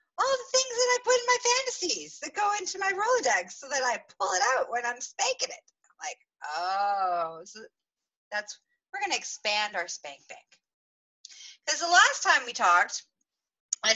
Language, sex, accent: English, female, American